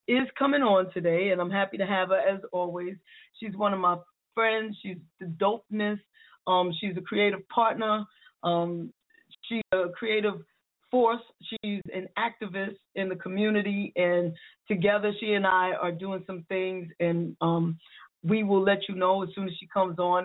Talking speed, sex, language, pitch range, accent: 170 wpm, female, English, 175-210 Hz, American